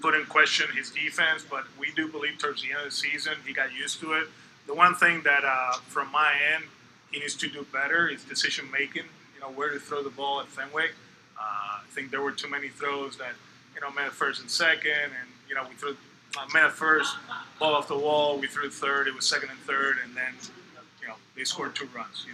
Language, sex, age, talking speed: English, male, 20-39, 235 wpm